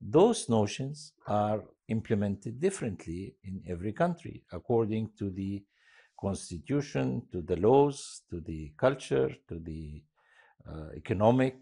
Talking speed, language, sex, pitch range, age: 115 wpm, English, male, 85-120 Hz, 50-69